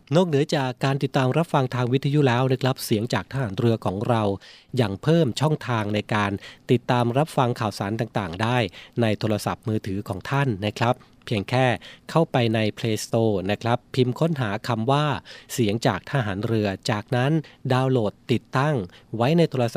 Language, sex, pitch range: Thai, male, 105-130 Hz